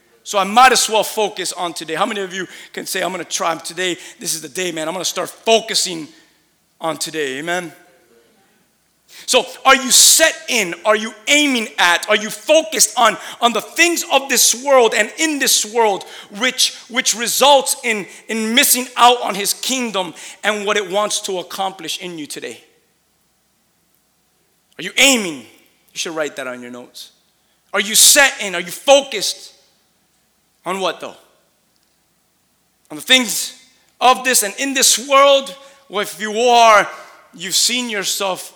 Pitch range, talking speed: 155-225 Hz, 170 wpm